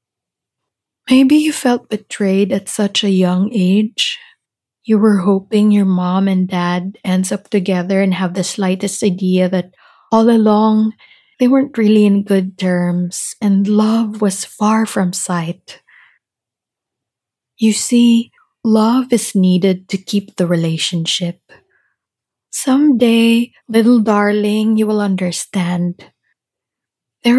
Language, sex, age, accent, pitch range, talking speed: English, female, 20-39, Filipino, 185-230 Hz, 120 wpm